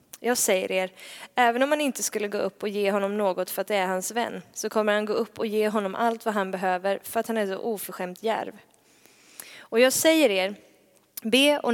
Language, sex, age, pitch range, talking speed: Swedish, female, 20-39, 200-245 Hz, 230 wpm